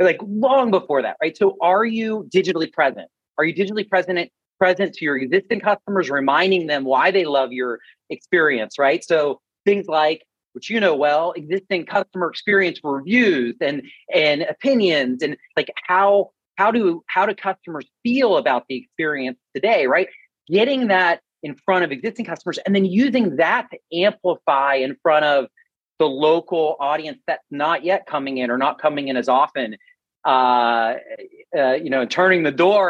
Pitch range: 145-195 Hz